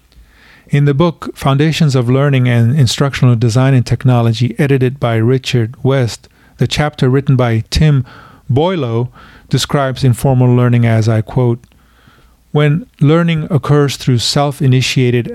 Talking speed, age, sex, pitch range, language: 125 wpm, 40-59, male, 115-140 Hz, English